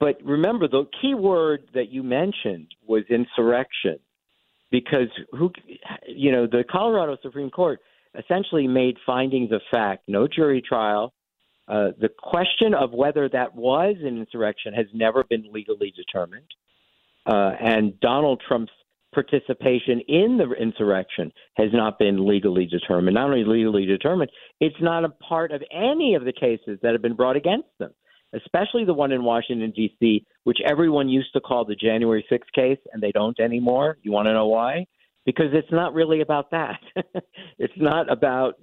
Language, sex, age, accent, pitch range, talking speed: English, male, 50-69, American, 110-155 Hz, 160 wpm